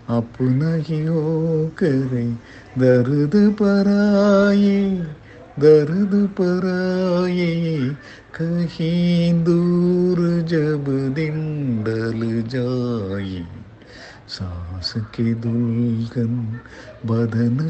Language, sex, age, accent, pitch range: Tamil, male, 50-69, native, 145-195 Hz